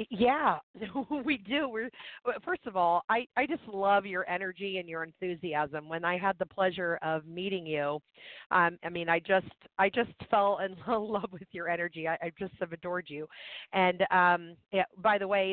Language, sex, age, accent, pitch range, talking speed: English, female, 40-59, American, 160-190 Hz, 190 wpm